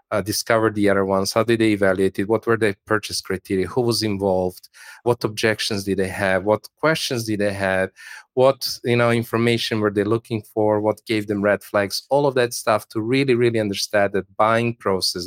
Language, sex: English, male